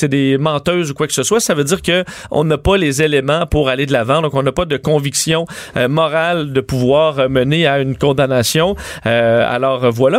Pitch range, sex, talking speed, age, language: 135-165 Hz, male, 230 wpm, 40-59, French